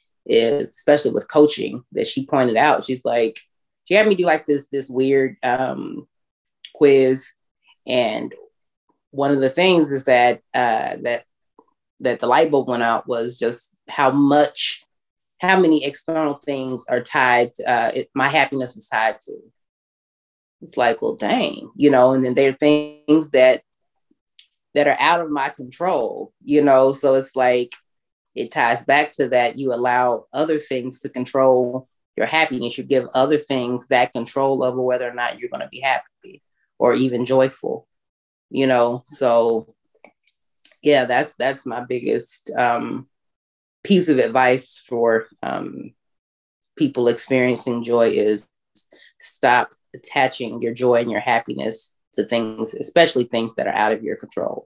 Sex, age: female, 30-49